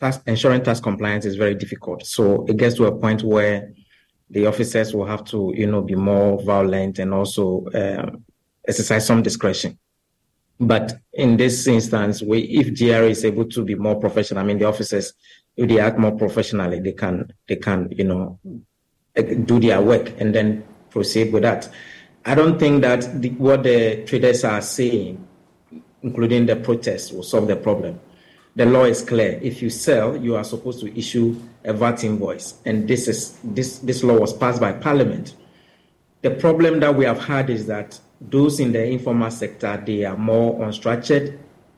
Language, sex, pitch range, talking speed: English, male, 105-125 Hz, 180 wpm